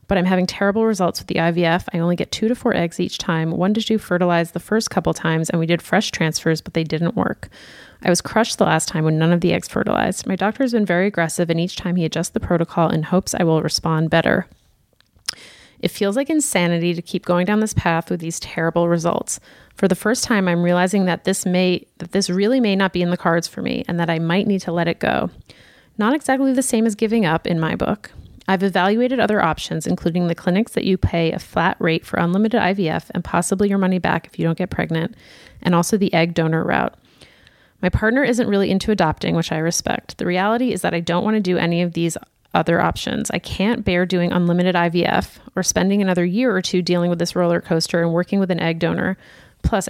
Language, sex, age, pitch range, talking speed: English, female, 30-49, 170-200 Hz, 235 wpm